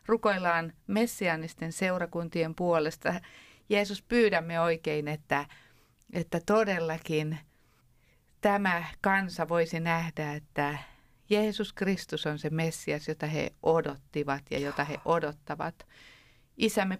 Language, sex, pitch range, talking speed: Finnish, female, 155-185 Hz, 100 wpm